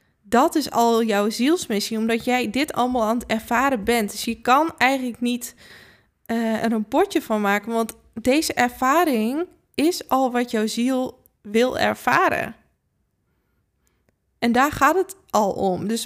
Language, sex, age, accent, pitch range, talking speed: Dutch, female, 20-39, Dutch, 225-260 Hz, 155 wpm